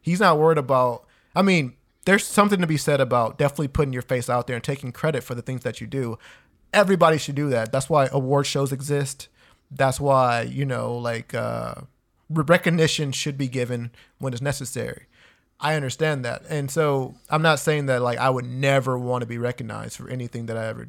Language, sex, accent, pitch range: English, male, American, 125-150 Hz